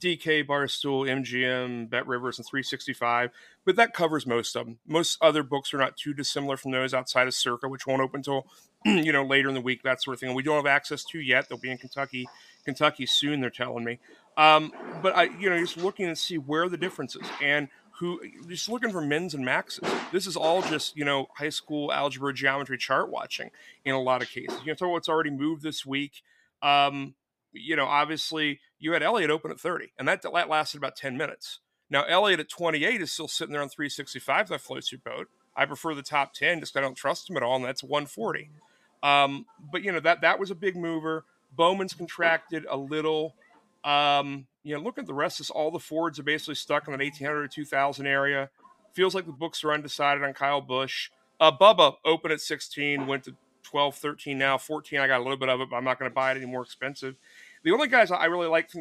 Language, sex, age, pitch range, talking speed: English, male, 30-49, 135-160 Hz, 230 wpm